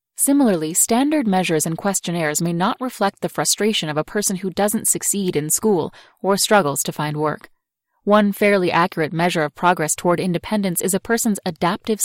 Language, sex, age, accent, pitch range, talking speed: English, female, 20-39, American, 165-215 Hz, 175 wpm